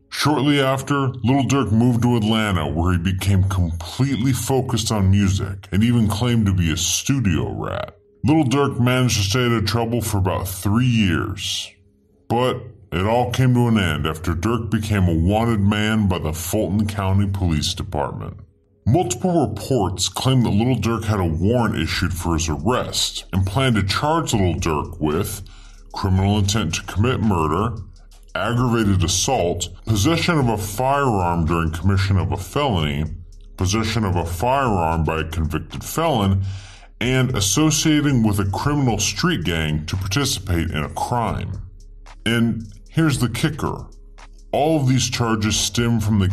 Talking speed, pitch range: 155 wpm, 90-115 Hz